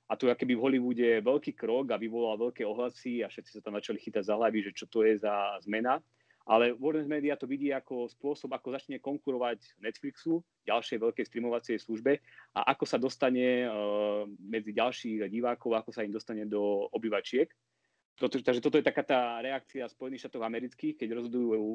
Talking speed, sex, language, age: 180 wpm, male, Slovak, 30-49